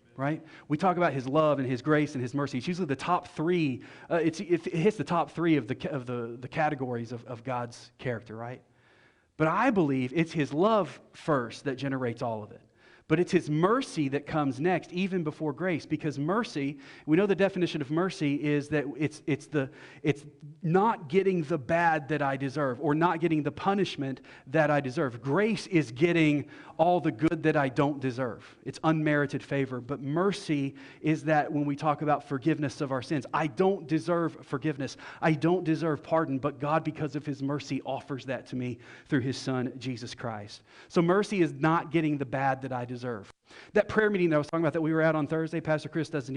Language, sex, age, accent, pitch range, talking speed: English, male, 40-59, American, 135-165 Hz, 205 wpm